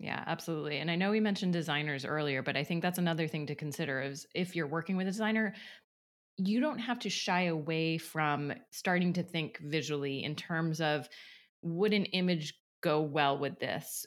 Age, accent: 20-39, American